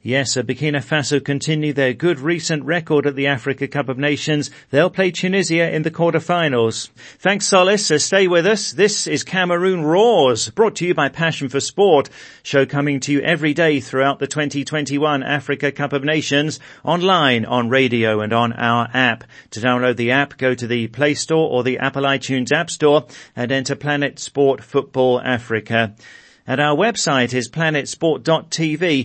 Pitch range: 125-155 Hz